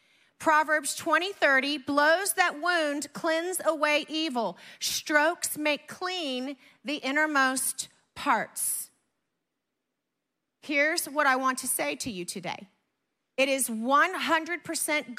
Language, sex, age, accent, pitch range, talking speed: English, female, 40-59, American, 210-280 Hz, 105 wpm